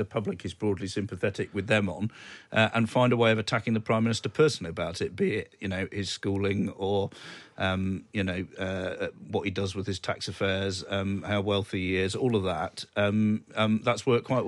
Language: English